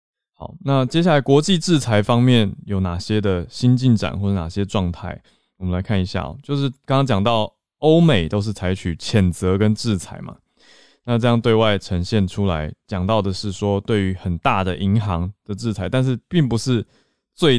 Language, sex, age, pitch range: Chinese, male, 20-39, 95-120 Hz